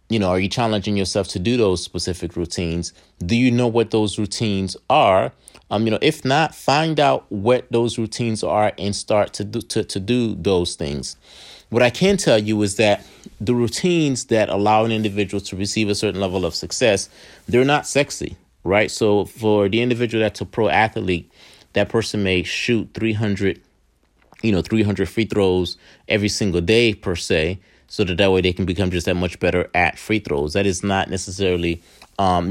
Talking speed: 190 wpm